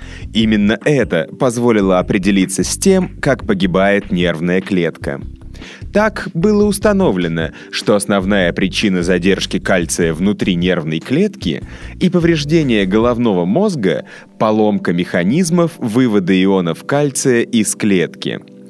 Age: 20-39